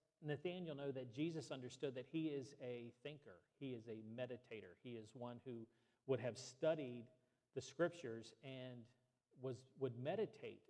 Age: 40-59